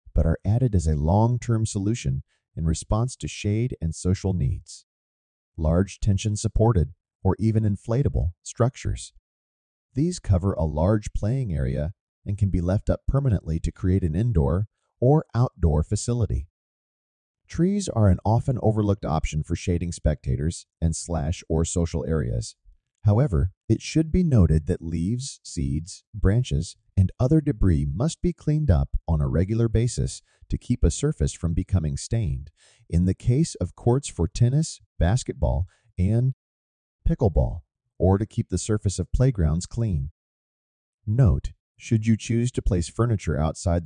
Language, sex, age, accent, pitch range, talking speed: English, male, 40-59, American, 80-115 Hz, 145 wpm